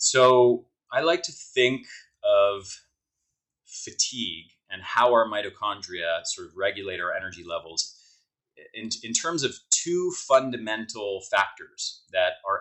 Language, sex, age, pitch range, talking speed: English, male, 30-49, 105-155 Hz, 125 wpm